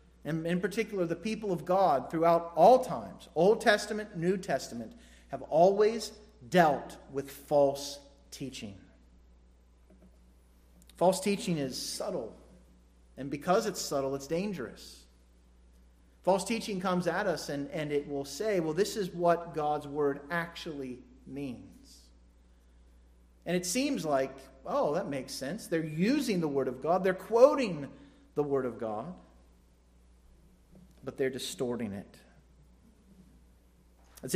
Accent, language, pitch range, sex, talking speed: American, English, 130-190 Hz, male, 130 wpm